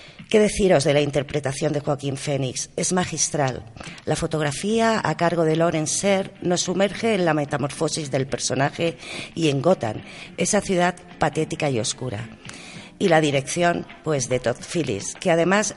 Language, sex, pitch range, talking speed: Spanish, female, 140-180 Hz, 155 wpm